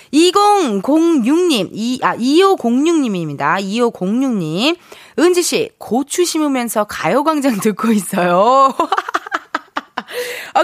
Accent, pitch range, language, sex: native, 200-330 Hz, Korean, female